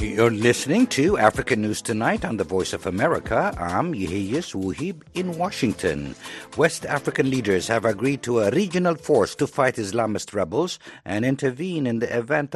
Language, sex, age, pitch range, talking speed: English, male, 60-79, 115-155 Hz, 165 wpm